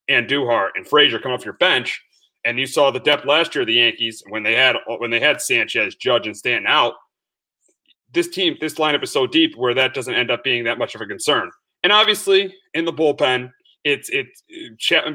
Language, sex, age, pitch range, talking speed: English, male, 30-49, 130-175 Hz, 220 wpm